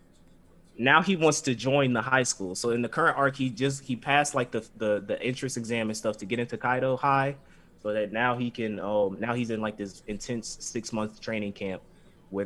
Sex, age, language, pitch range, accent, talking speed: male, 20-39, English, 100-125 Hz, American, 225 wpm